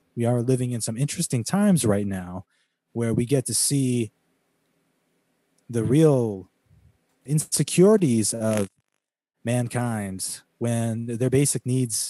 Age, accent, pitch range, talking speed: 30-49, American, 115-145 Hz, 115 wpm